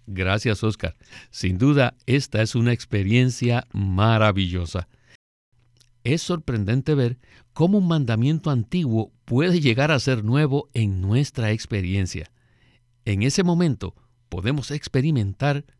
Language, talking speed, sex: Spanish, 110 wpm, male